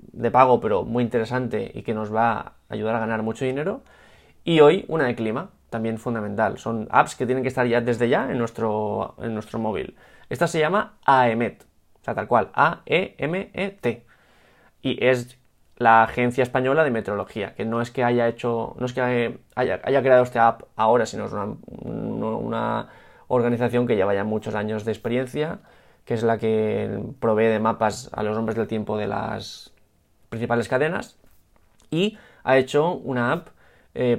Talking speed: 180 wpm